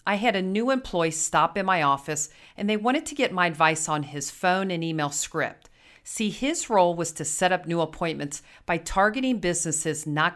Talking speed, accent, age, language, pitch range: 205 wpm, American, 40-59, English, 155-210 Hz